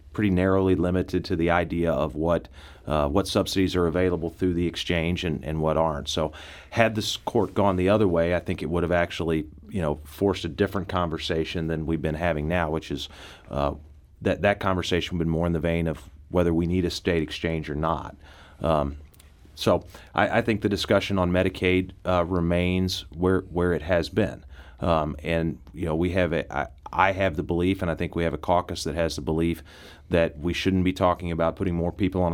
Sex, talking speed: male, 215 wpm